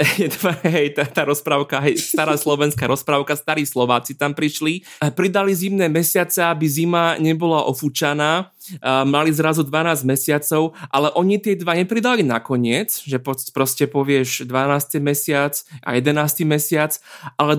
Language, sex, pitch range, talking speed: Slovak, male, 130-160 Hz, 135 wpm